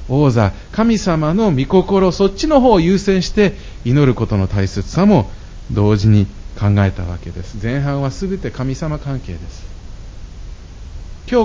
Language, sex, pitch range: Japanese, male, 95-145 Hz